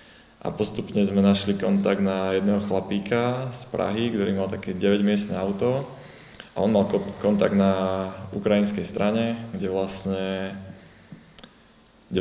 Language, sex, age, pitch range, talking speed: Slovak, male, 20-39, 95-105 Hz, 130 wpm